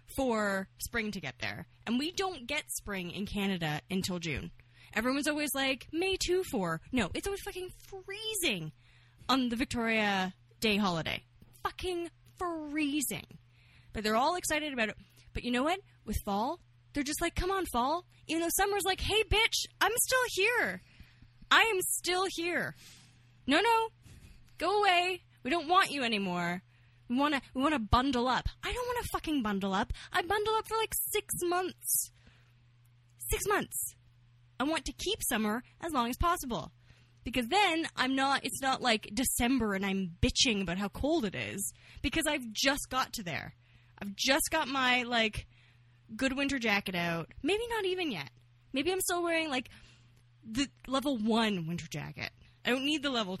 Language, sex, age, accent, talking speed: English, female, 10-29, American, 170 wpm